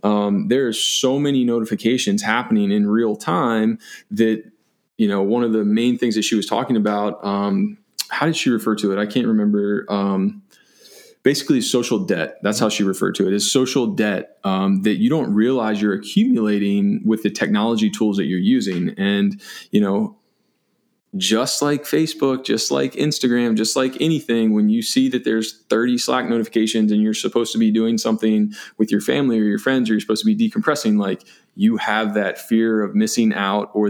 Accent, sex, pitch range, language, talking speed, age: American, male, 105-140 Hz, English, 200 wpm, 20-39